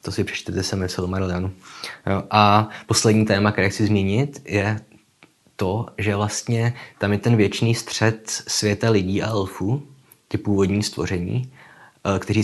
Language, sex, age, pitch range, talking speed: Czech, male, 20-39, 95-110 Hz, 135 wpm